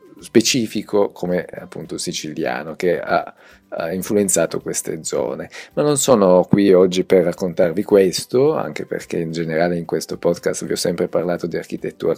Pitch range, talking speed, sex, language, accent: 80-95 Hz, 150 wpm, male, Italian, native